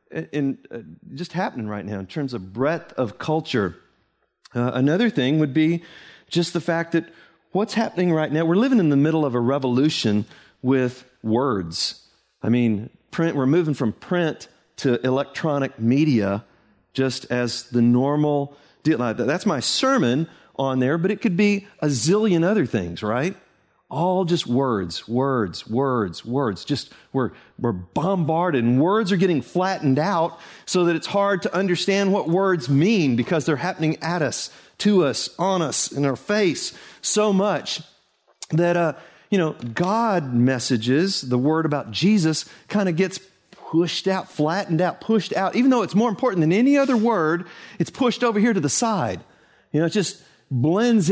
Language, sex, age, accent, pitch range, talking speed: English, male, 40-59, American, 130-185 Hz, 170 wpm